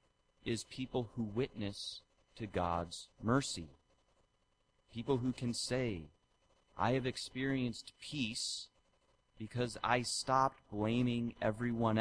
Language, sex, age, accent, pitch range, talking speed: English, male, 30-49, American, 100-120 Hz, 100 wpm